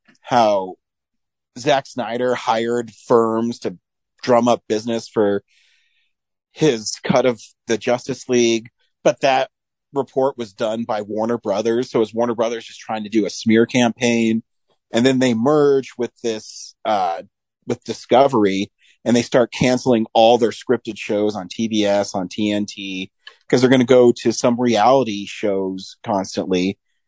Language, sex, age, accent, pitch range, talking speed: English, male, 40-59, American, 110-130 Hz, 145 wpm